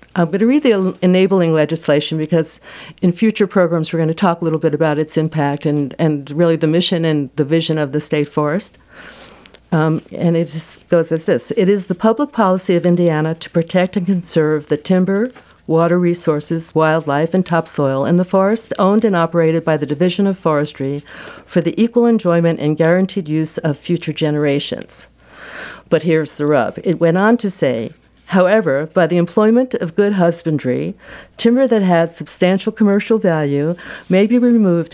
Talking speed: 180 wpm